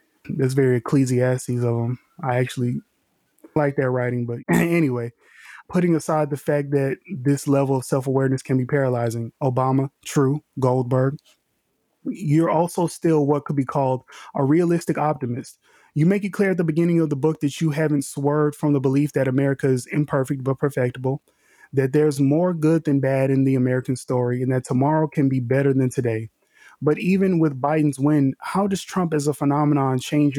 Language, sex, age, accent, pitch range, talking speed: English, male, 20-39, American, 130-155 Hz, 180 wpm